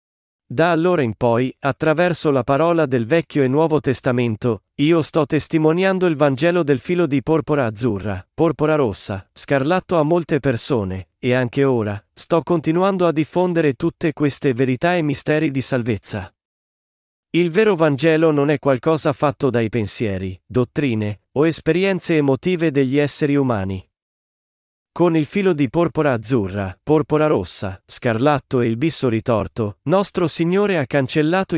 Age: 40-59